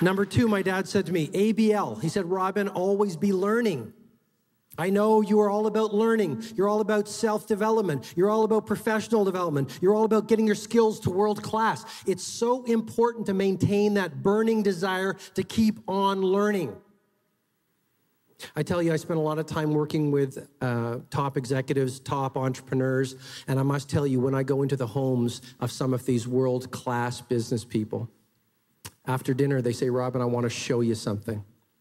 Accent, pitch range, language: American, 115-190 Hz, English